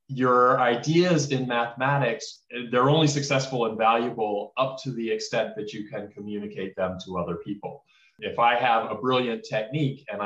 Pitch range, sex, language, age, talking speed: 95-125 Hz, male, English, 30-49, 165 wpm